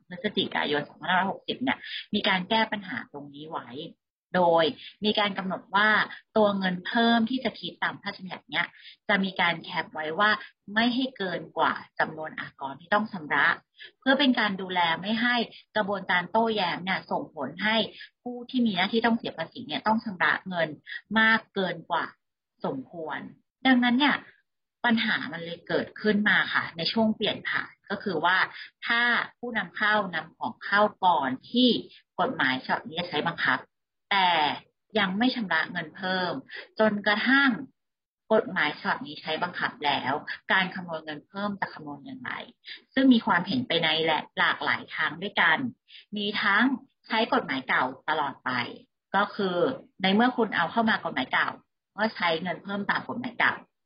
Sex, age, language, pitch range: female, 30-49, English, 175-230 Hz